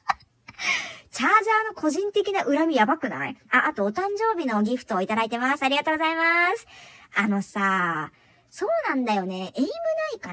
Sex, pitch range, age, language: male, 200-315 Hz, 40-59, Japanese